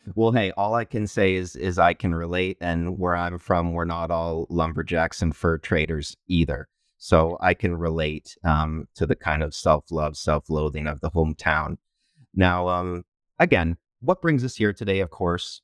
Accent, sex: American, male